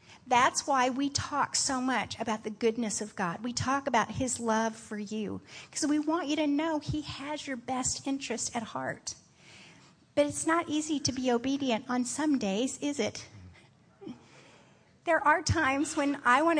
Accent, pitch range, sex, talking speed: American, 230-300 Hz, female, 175 wpm